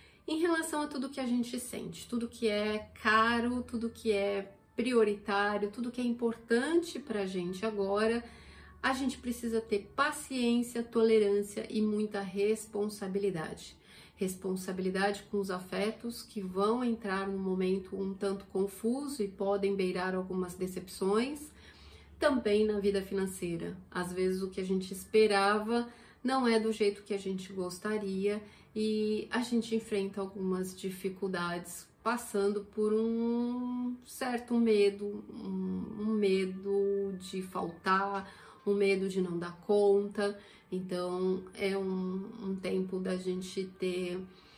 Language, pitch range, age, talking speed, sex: Portuguese, 190-220 Hz, 30-49, 130 wpm, female